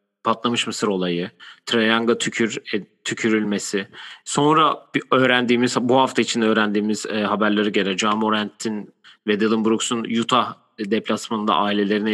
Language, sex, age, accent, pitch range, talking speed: Turkish, male, 40-59, native, 105-130 Hz, 120 wpm